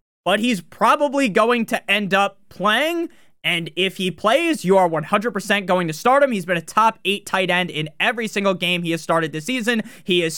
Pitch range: 175-220 Hz